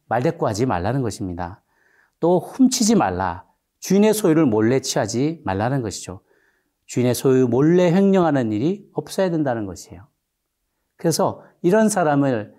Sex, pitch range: male, 105-155 Hz